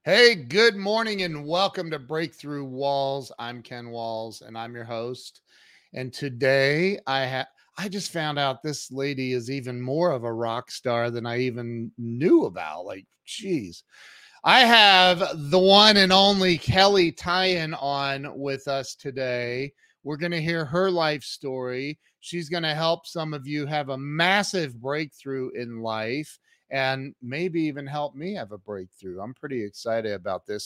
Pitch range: 125-170 Hz